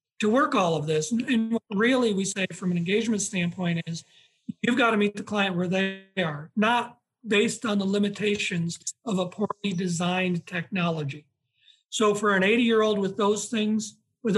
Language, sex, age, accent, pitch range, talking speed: English, male, 40-59, American, 180-215 Hz, 180 wpm